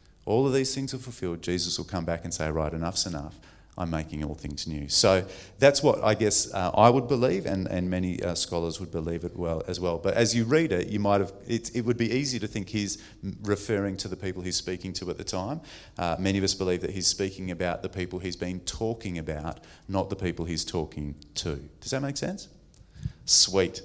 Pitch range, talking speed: 80-100 Hz, 230 wpm